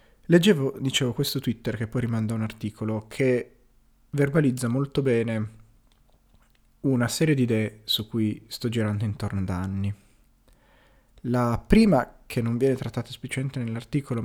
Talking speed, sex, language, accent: 135 wpm, male, Italian, native